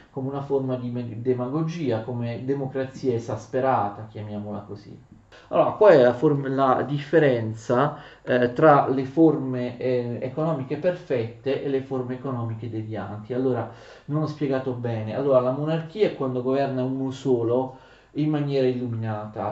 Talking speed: 135 wpm